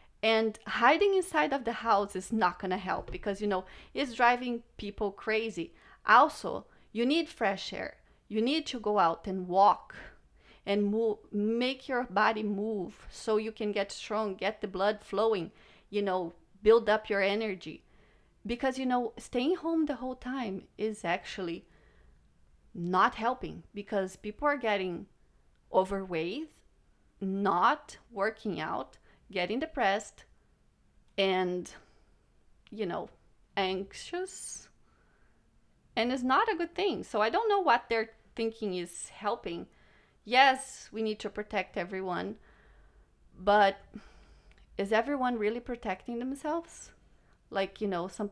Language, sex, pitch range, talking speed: English, female, 195-240 Hz, 135 wpm